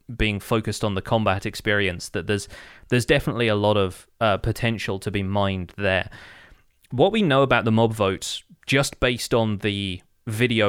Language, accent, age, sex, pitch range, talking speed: English, British, 20-39, male, 100-120 Hz, 175 wpm